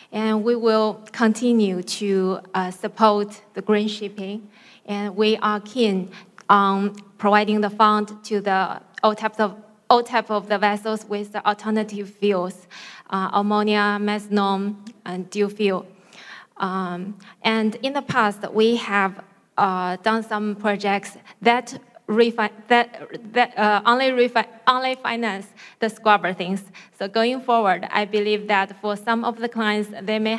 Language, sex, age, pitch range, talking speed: English, female, 20-39, 200-220 Hz, 145 wpm